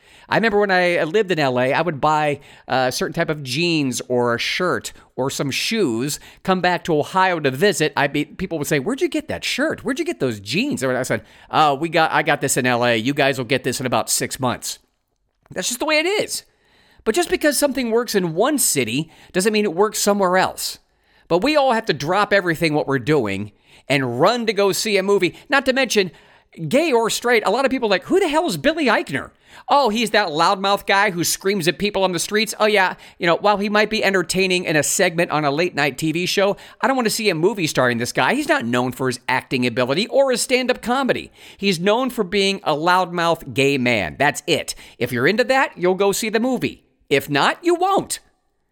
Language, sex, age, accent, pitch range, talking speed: English, male, 50-69, American, 145-220 Hz, 235 wpm